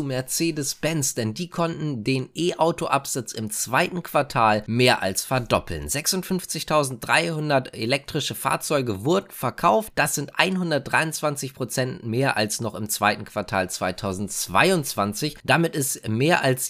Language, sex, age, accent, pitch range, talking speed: German, male, 20-39, German, 110-150 Hz, 120 wpm